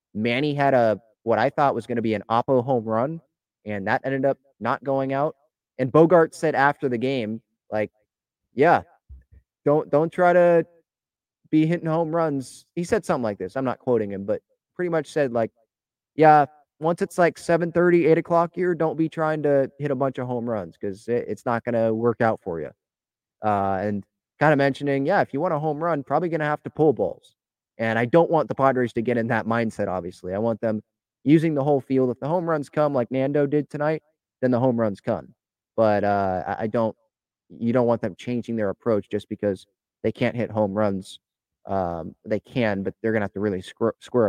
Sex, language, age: male, English, 20-39